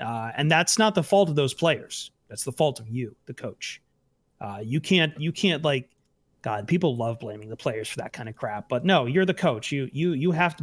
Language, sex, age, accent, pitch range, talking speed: English, male, 30-49, American, 125-165 Hz, 245 wpm